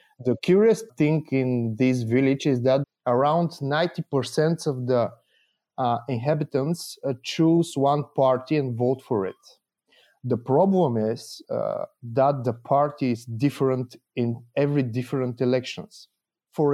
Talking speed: 130 wpm